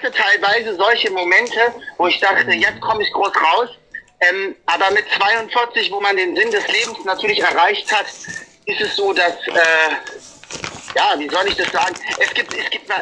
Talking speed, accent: 180 wpm, German